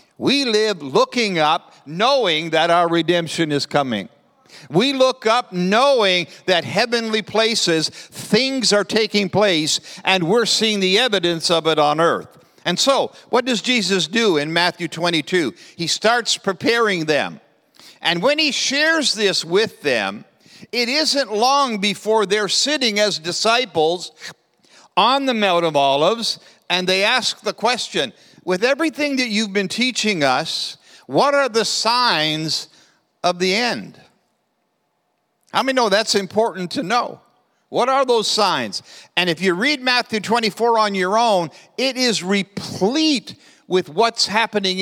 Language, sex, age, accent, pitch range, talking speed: English, male, 60-79, American, 175-235 Hz, 145 wpm